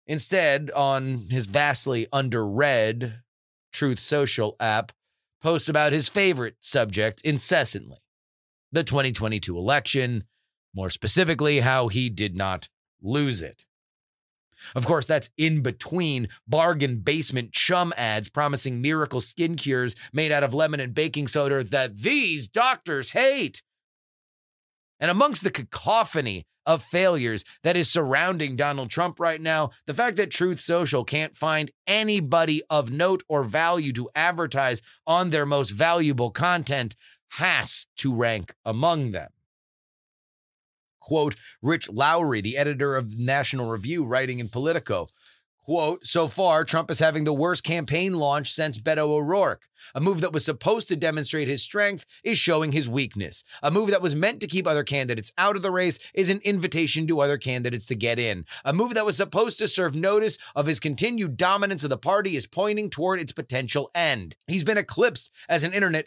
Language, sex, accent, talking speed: English, male, American, 155 wpm